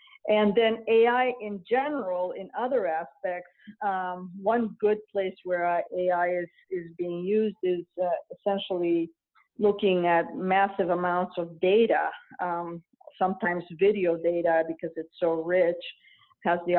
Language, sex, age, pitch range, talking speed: English, female, 50-69, 165-185 Hz, 135 wpm